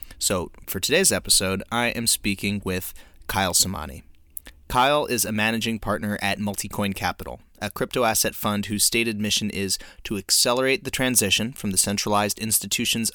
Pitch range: 95-110 Hz